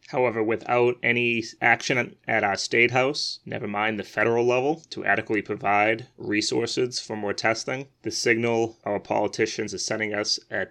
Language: English